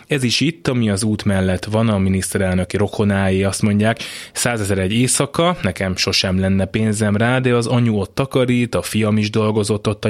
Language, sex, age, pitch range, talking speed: Hungarian, male, 20-39, 100-120 Hz, 190 wpm